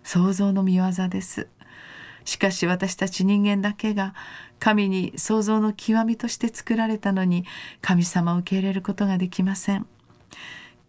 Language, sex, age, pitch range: Japanese, female, 40-59, 185-220 Hz